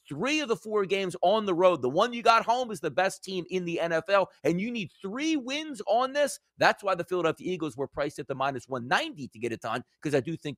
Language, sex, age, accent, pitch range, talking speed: English, male, 40-59, American, 150-230 Hz, 260 wpm